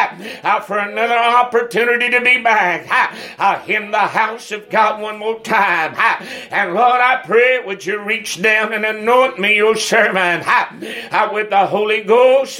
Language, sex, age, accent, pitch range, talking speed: English, male, 60-79, American, 210-245 Hz, 165 wpm